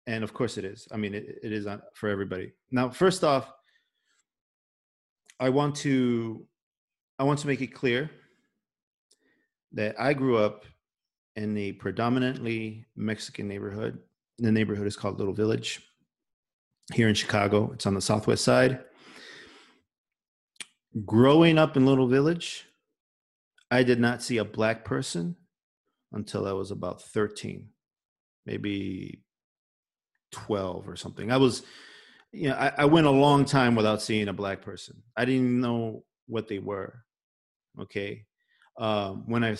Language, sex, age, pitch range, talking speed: English, male, 40-59, 105-135 Hz, 140 wpm